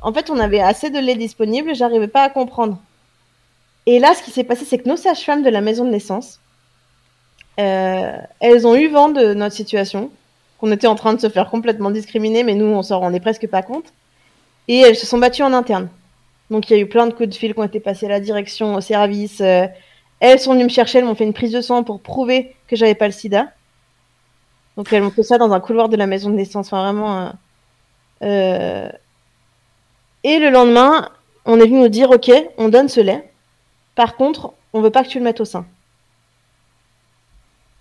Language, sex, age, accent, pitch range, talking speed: French, female, 20-39, French, 200-250 Hz, 225 wpm